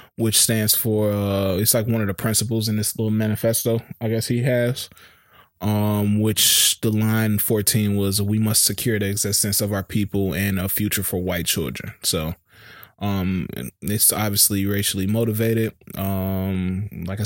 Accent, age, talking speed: American, 20-39, 160 wpm